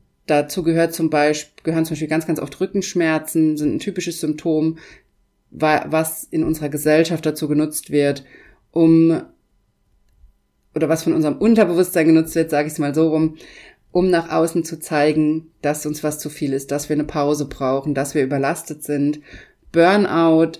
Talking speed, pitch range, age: 165 wpm, 150-165 Hz, 30-49